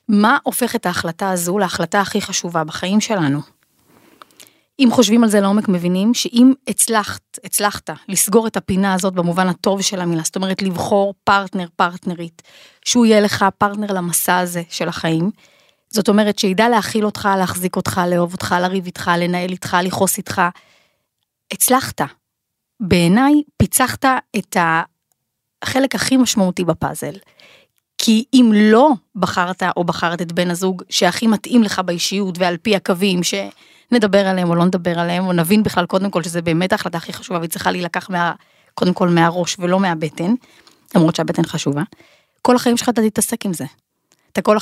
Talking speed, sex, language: 155 wpm, female, Hebrew